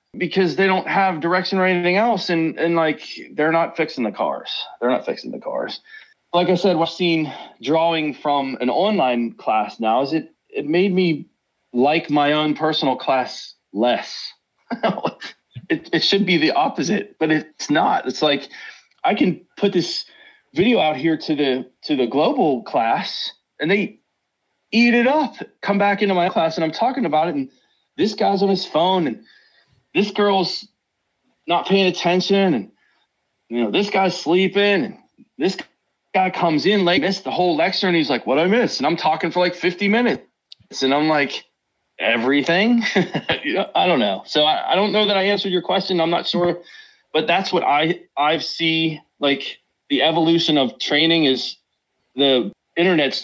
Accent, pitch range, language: American, 155-195 Hz, English